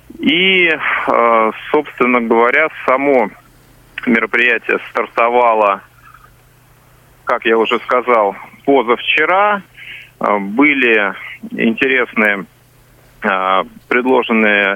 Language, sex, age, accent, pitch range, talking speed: Russian, male, 30-49, native, 110-140 Hz, 55 wpm